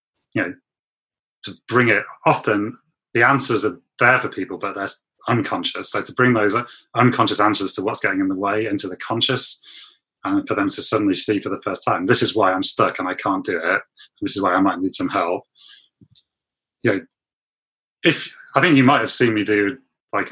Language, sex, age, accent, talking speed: English, male, 30-49, British, 205 wpm